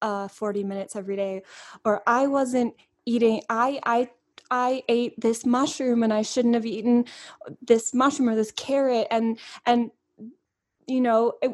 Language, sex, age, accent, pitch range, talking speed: English, female, 10-29, American, 215-255 Hz, 155 wpm